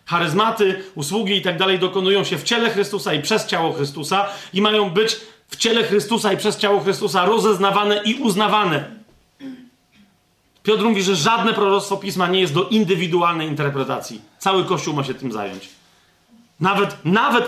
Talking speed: 160 wpm